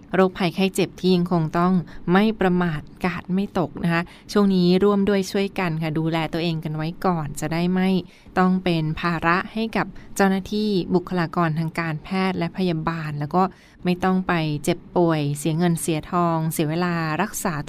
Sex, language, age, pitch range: female, Thai, 20-39, 165-195 Hz